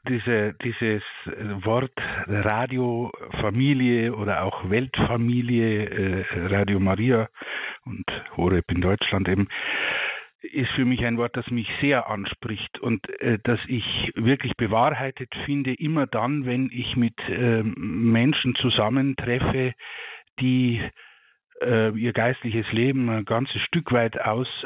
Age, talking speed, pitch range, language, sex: 50-69, 110 wpm, 110-130 Hz, German, male